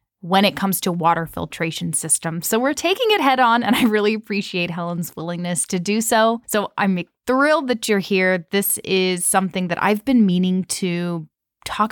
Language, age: English, 20-39